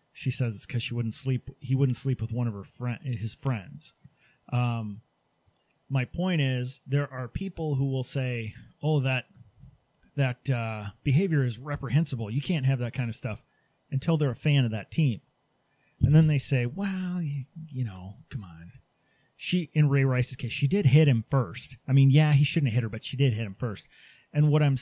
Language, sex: English, male